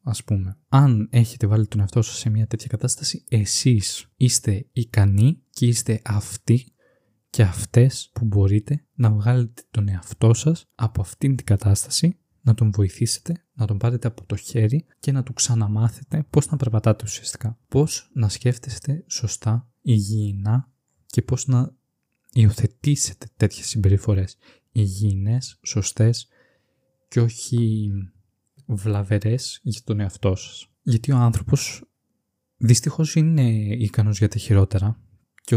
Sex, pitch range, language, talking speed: male, 105-125 Hz, Greek, 130 wpm